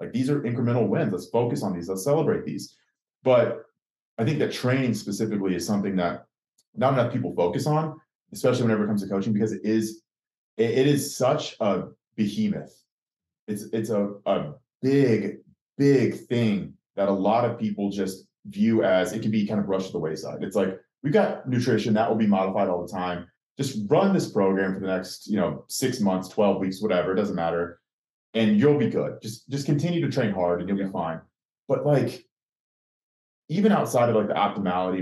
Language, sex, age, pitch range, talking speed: English, male, 30-49, 95-120 Hz, 195 wpm